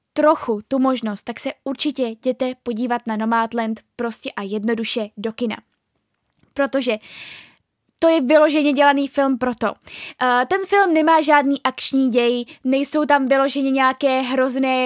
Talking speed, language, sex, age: 135 wpm, Czech, female, 10-29